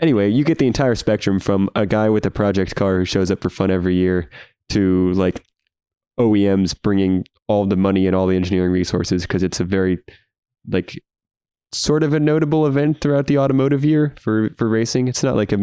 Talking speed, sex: 205 wpm, male